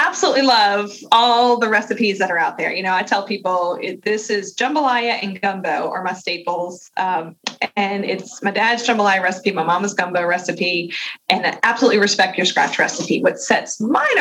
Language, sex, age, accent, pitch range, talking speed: English, female, 20-39, American, 195-245 Hz, 180 wpm